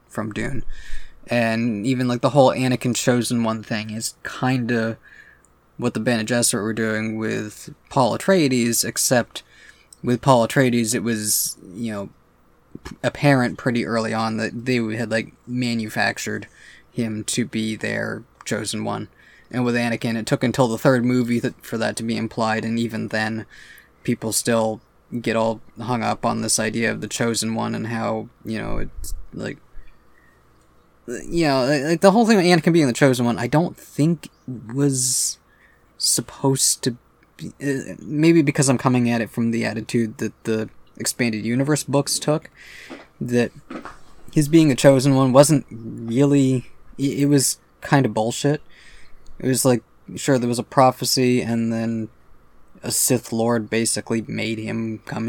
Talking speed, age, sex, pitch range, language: 160 wpm, 20-39, male, 110-130 Hz, English